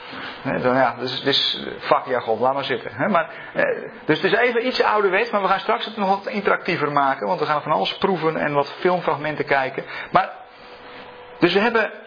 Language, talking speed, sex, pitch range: Dutch, 205 wpm, male, 150-250 Hz